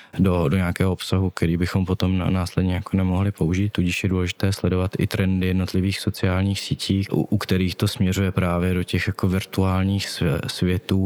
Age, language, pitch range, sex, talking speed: 20-39, Czech, 95-105 Hz, male, 170 wpm